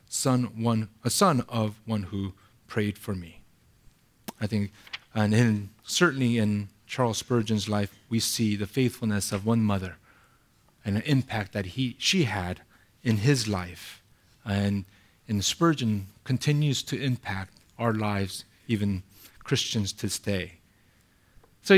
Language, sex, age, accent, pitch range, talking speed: English, male, 40-59, American, 105-135 Hz, 140 wpm